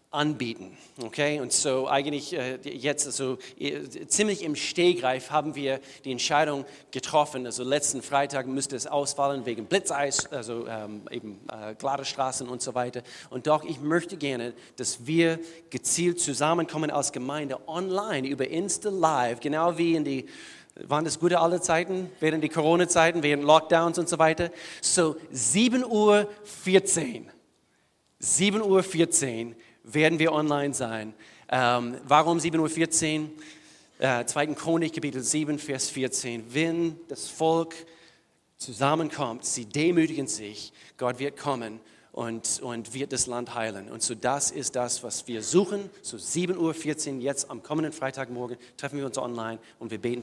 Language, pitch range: German, 125-165 Hz